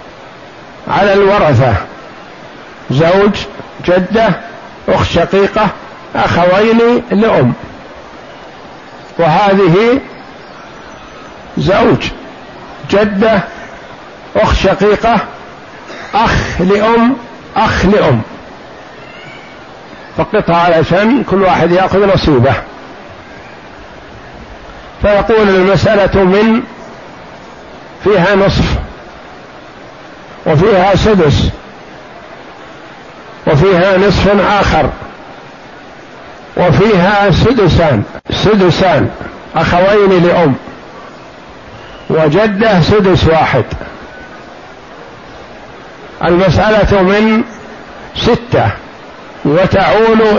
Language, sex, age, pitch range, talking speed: Arabic, male, 60-79, 175-215 Hz, 55 wpm